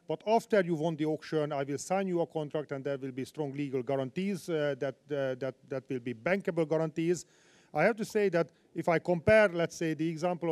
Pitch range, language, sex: 150-185 Hz, English, male